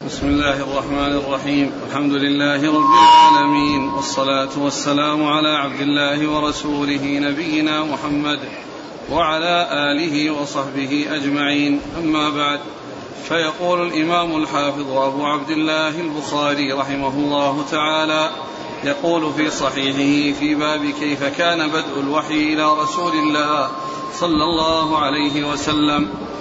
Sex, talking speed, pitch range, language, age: male, 110 wpm, 145-155 Hz, Arabic, 40-59